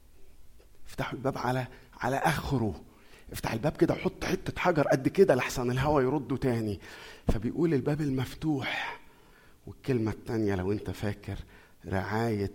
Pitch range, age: 95-120 Hz, 50-69